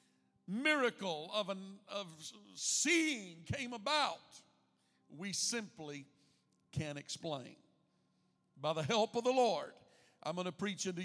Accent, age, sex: American, 50-69, male